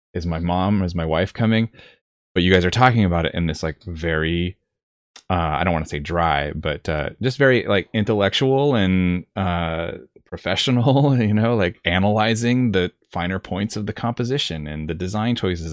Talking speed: 185 wpm